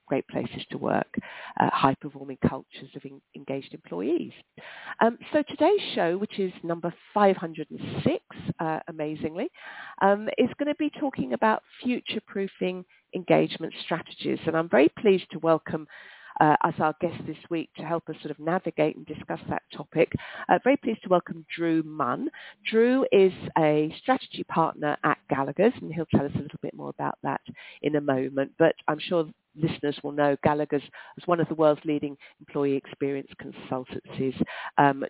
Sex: female